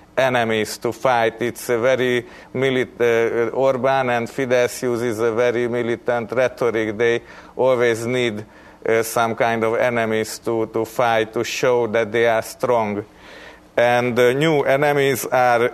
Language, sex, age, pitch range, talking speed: English, male, 40-59, 115-125 Hz, 145 wpm